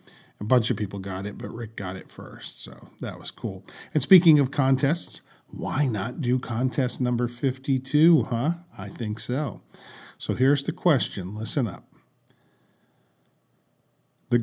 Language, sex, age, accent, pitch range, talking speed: English, male, 50-69, American, 110-140 Hz, 150 wpm